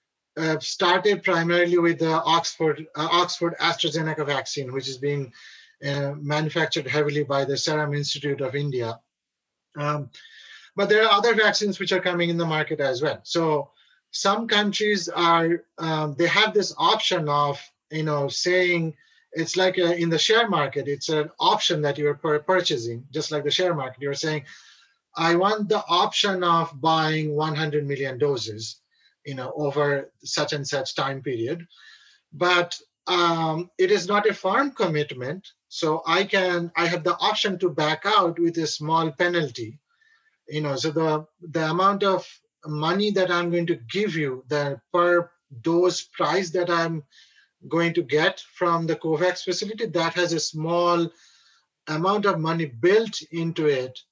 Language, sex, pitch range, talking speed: English, male, 150-180 Hz, 165 wpm